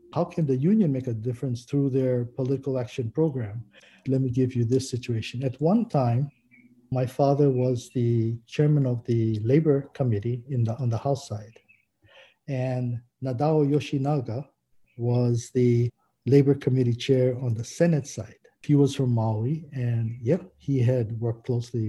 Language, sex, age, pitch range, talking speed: English, male, 60-79, 120-145 Hz, 155 wpm